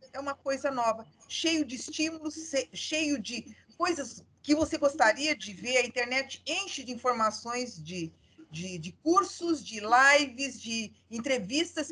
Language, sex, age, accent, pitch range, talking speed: Portuguese, female, 50-69, Brazilian, 220-295 Hz, 135 wpm